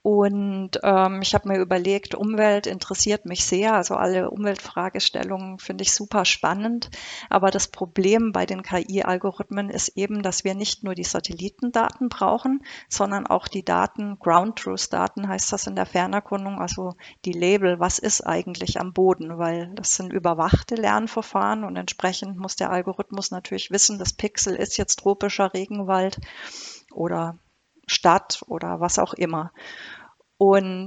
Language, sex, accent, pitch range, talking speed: German, female, German, 185-215 Hz, 145 wpm